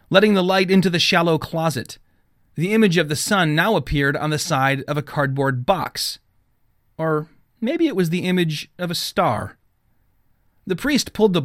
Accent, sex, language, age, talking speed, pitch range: American, male, English, 30-49, 180 wpm, 120-180 Hz